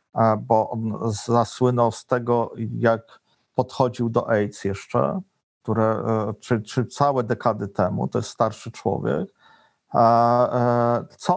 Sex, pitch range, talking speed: male, 115-145 Hz, 100 wpm